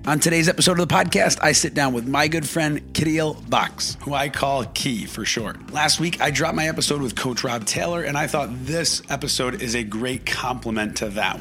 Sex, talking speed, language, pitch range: male, 220 wpm, English, 120-155 Hz